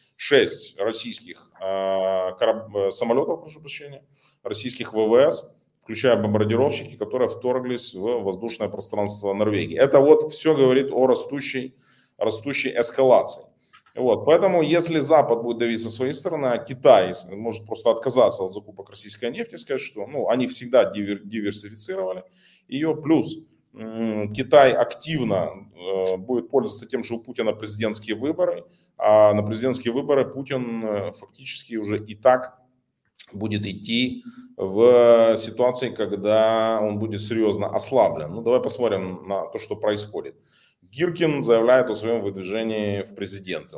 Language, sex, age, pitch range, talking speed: Russian, male, 30-49, 105-140 Hz, 130 wpm